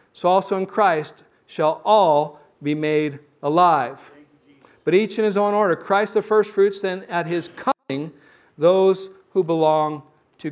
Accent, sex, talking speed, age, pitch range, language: American, male, 150 wpm, 40-59, 155-195 Hz, English